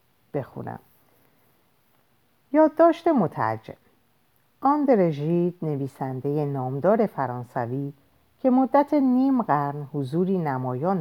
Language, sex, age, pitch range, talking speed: Persian, female, 50-69, 130-190 Hz, 80 wpm